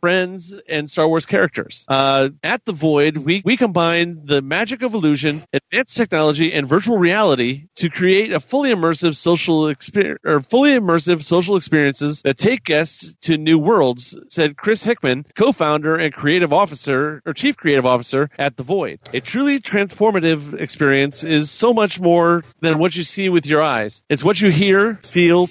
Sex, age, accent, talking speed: male, 40-59, American, 170 wpm